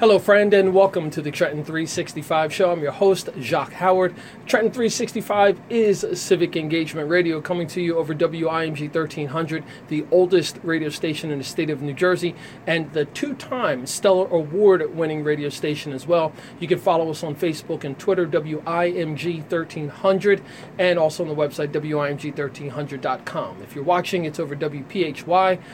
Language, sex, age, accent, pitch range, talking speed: English, male, 40-59, American, 150-190 Hz, 155 wpm